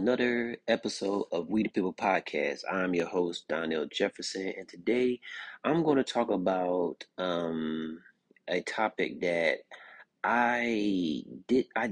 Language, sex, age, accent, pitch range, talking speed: English, male, 30-49, American, 85-105 Hz, 125 wpm